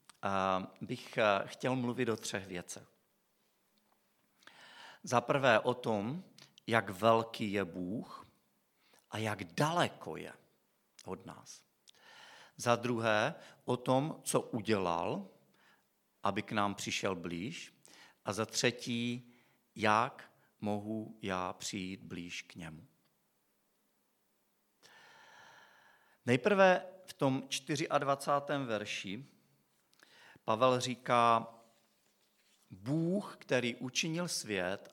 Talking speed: 90 wpm